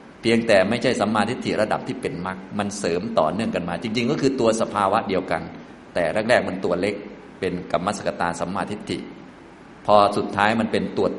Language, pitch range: Thai, 90-125 Hz